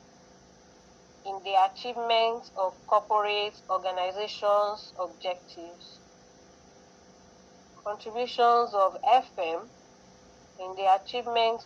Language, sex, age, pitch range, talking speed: English, female, 30-49, 185-230 Hz, 65 wpm